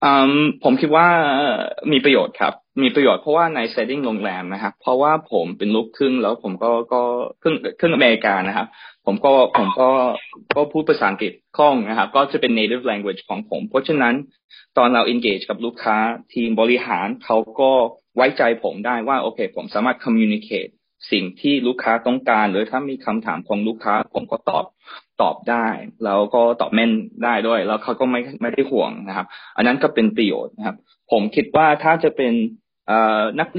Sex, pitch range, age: male, 110-145 Hz, 20-39